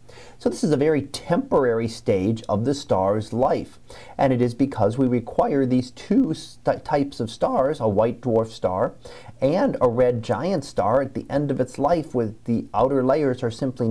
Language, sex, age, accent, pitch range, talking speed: English, male, 40-59, American, 110-135 Hz, 190 wpm